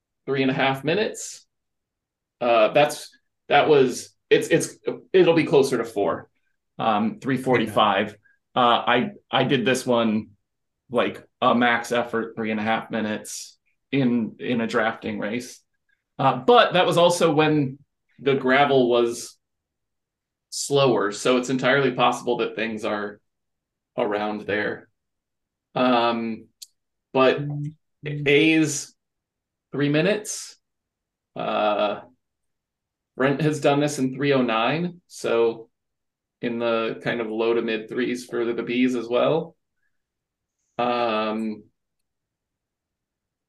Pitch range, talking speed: 115-145 Hz, 115 wpm